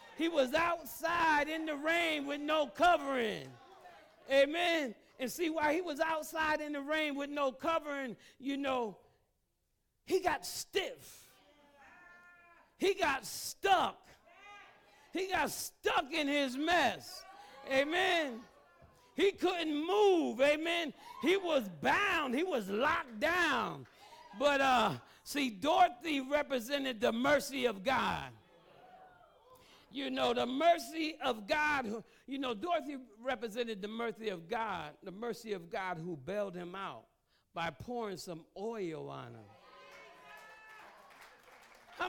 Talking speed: 125 wpm